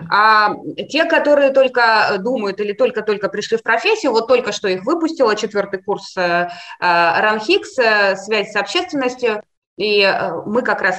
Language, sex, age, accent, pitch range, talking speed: Russian, female, 20-39, native, 185-265 Hz, 135 wpm